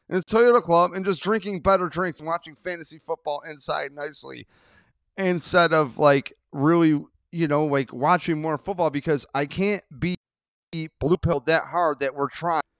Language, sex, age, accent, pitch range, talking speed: English, male, 30-49, American, 135-175 Hz, 160 wpm